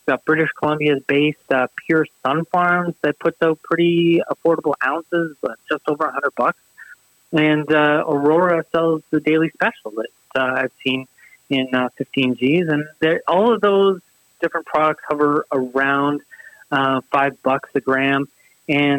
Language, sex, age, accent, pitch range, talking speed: English, male, 30-49, American, 135-165 Hz, 160 wpm